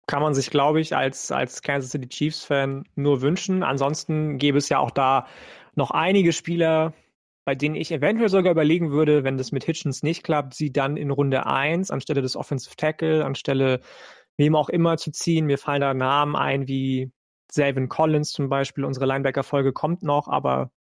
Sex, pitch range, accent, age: male, 130-150 Hz, German, 30-49